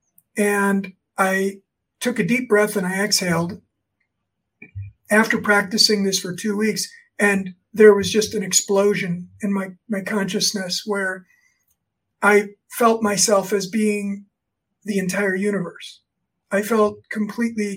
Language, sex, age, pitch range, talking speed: English, male, 50-69, 195-210 Hz, 125 wpm